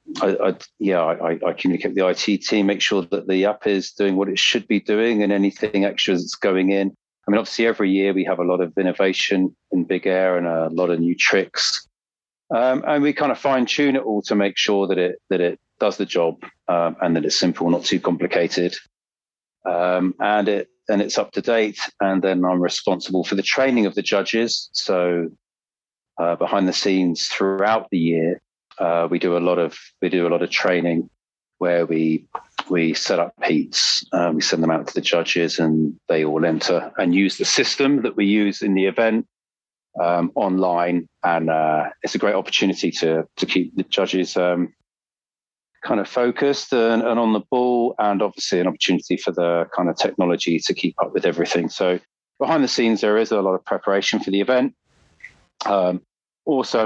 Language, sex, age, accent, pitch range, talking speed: English, male, 40-59, British, 85-105 Hz, 205 wpm